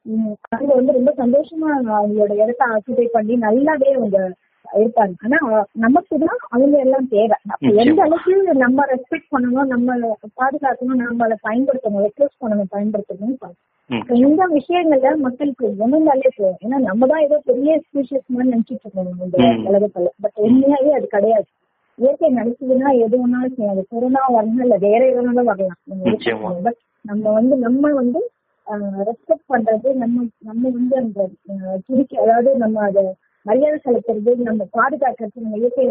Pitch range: 210-265 Hz